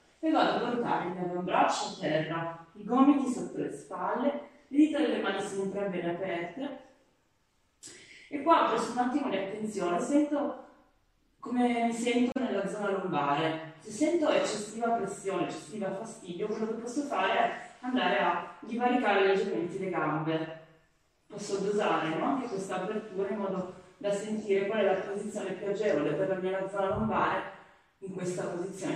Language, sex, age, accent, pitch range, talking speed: Italian, female, 30-49, native, 170-235 Hz, 160 wpm